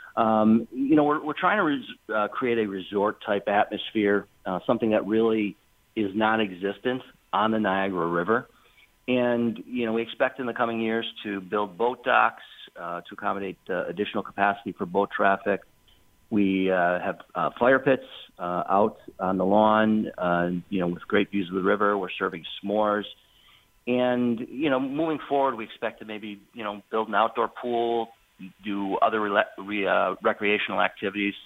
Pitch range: 95-115 Hz